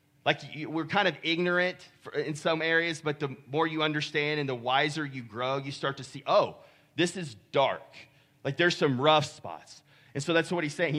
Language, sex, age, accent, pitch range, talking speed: English, male, 30-49, American, 140-170 Hz, 200 wpm